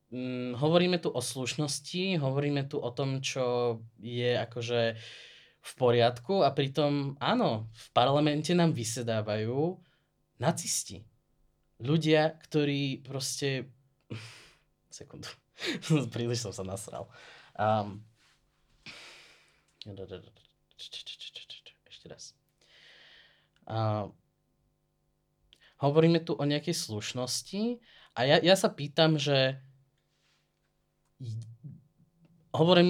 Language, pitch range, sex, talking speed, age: Slovak, 120-150 Hz, male, 80 wpm, 20-39